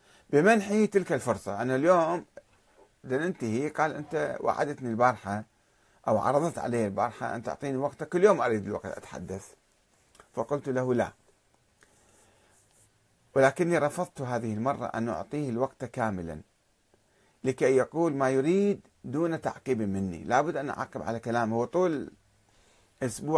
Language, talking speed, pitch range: Arabic, 120 wpm, 115-165 Hz